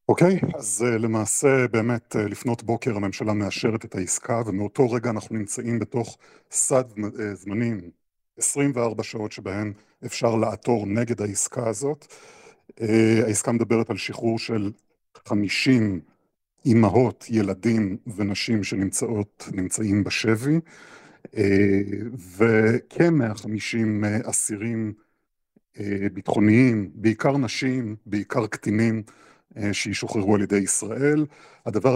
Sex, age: male, 50-69